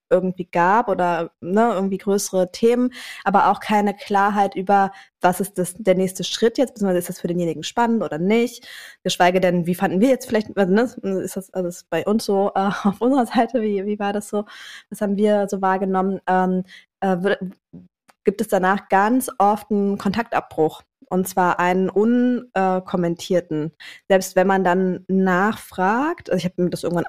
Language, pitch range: German, 180-210 Hz